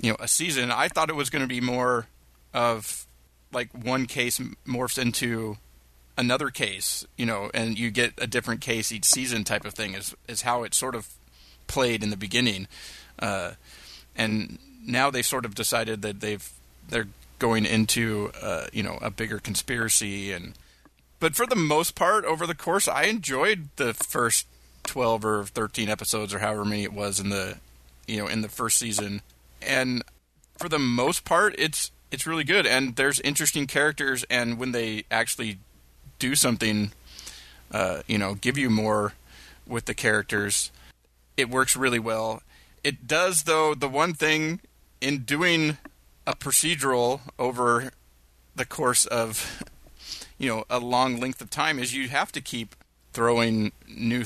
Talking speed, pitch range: 165 wpm, 100-130 Hz